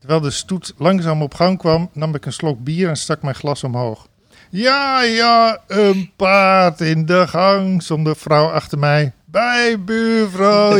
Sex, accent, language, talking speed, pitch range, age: male, Dutch, Dutch, 165 wpm, 140-180 Hz, 50-69